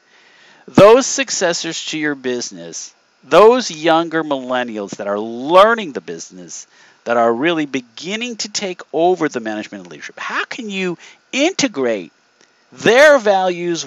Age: 50-69